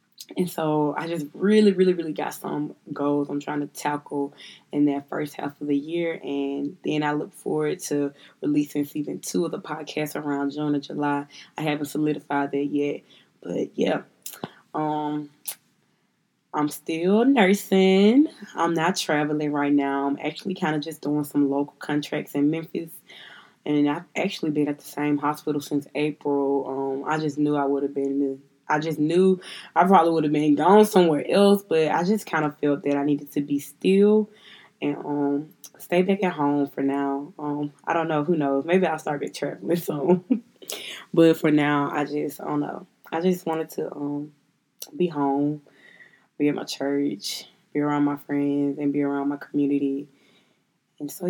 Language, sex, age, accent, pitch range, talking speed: English, female, 20-39, American, 145-165 Hz, 180 wpm